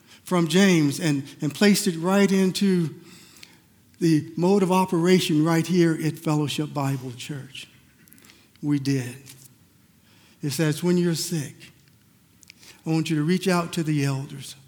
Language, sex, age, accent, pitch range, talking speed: English, male, 50-69, American, 135-185 Hz, 140 wpm